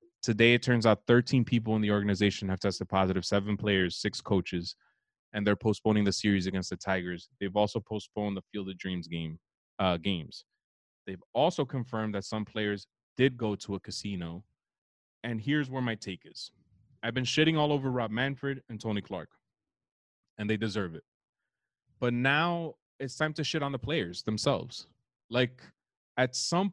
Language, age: English, 20-39